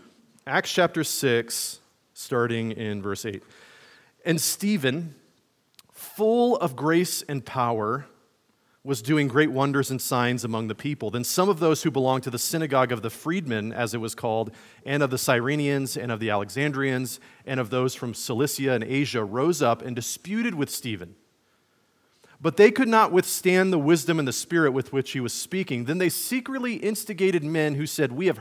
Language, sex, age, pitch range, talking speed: English, male, 40-59, 120-170 Hz, 175 wpm